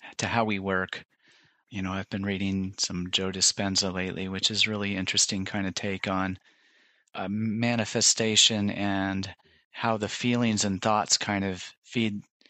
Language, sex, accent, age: English, male, American, 30-49